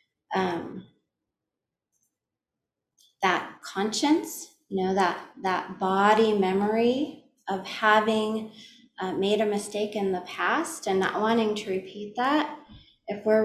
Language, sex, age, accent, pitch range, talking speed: English, female, 30-49, American, 185-230 Hz, 115 wpm